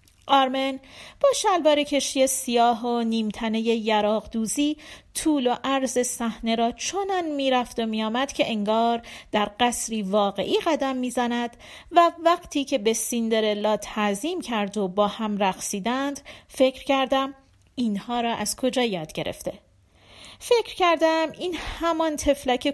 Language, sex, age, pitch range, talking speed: Persian, female, 40-59, 215-290 Hz, 125 wpm